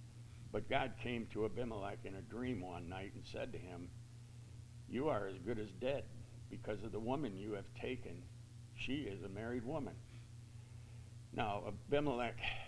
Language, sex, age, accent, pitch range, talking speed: English, male, 60-79, American, 110-120 Hz, 160 wpm